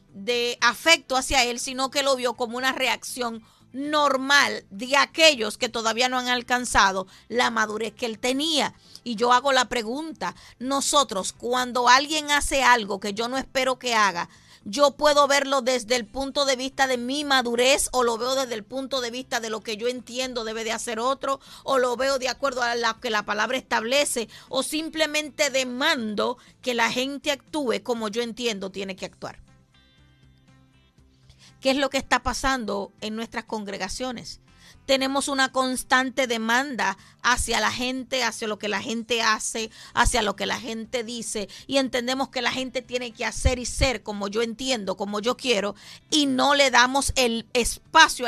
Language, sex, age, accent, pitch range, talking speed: English, female, 40-59, American, 220-270 Hz, 175 wpm